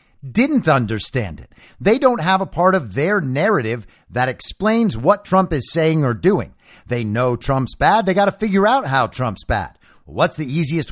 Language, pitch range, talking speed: English, 120-190 Hz, 185 wpm